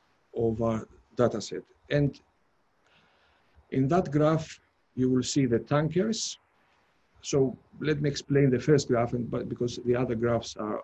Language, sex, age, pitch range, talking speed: English, male, 50-69, 120-150 Hz, 150 wpm